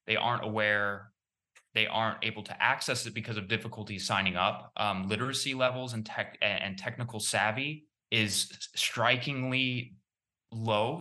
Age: 20-39